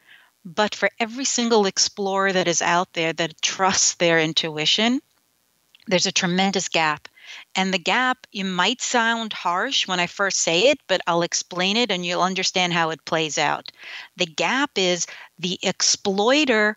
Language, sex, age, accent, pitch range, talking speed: English, female, 40-59, American, 175-225 Hz, 160 wpm